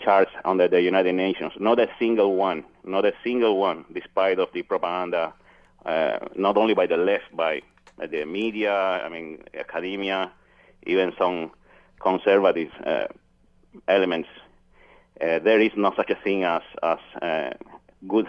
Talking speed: 150 wpm